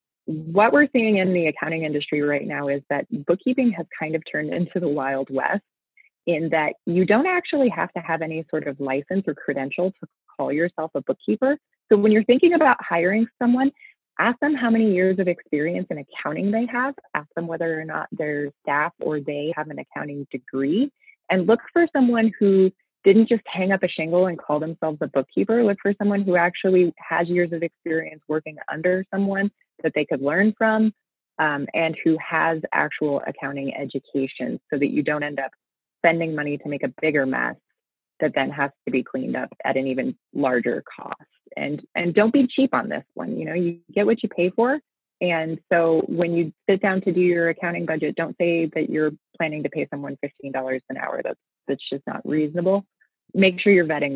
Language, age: English, 20-39